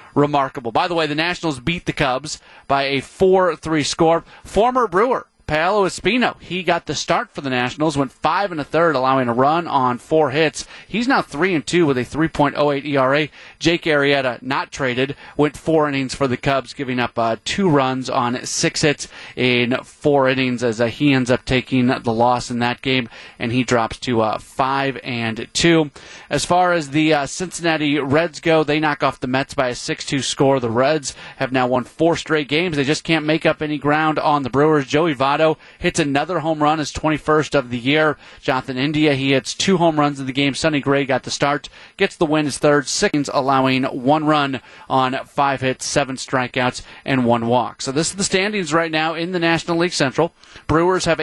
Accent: American